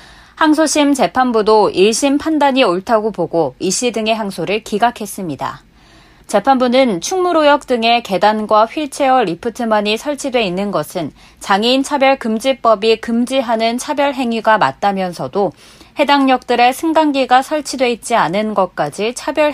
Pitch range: 200-270 Hz